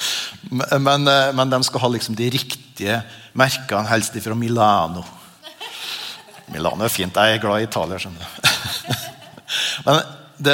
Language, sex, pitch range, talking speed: English, male, 115-145 Hz, 125 wpm